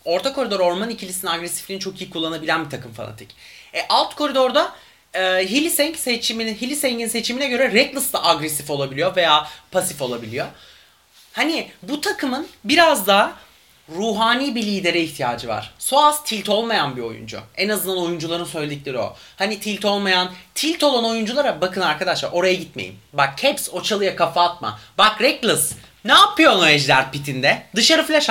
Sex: male